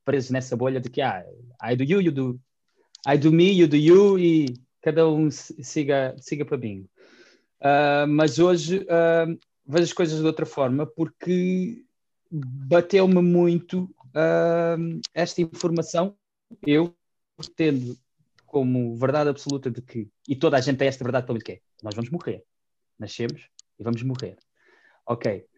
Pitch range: 125-165 Hz